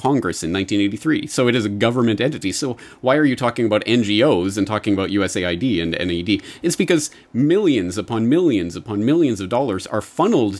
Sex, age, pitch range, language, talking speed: male, 30-49, 100-140 Hz, English, 185 wpm